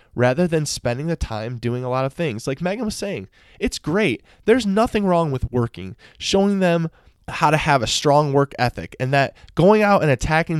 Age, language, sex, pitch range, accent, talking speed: 20-39, English, male, 120-165 Hz, American, 205 wpm